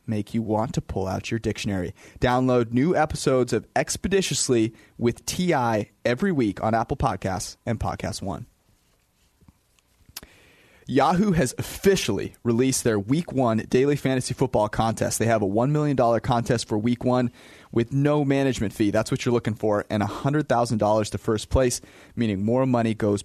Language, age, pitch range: English, 30-49, 105-130 Hz